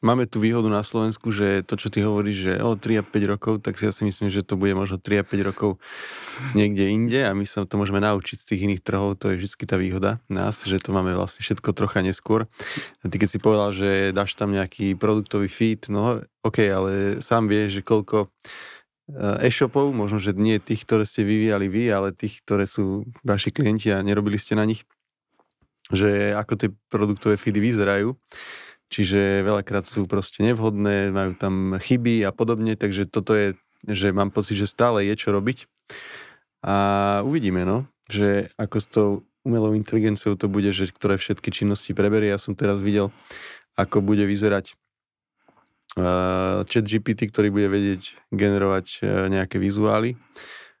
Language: Slovak